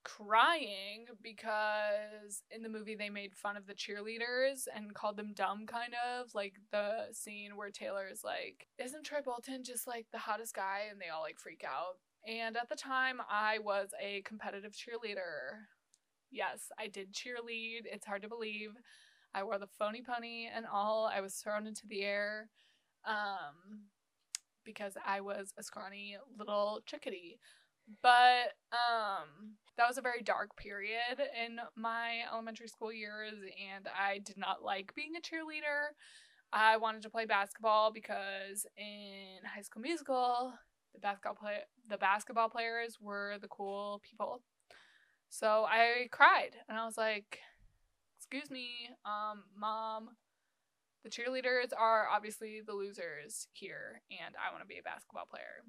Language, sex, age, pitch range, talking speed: English, female, 20-39, 205-235 Hz, 150 wpm